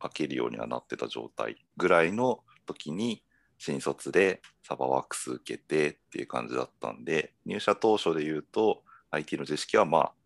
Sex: male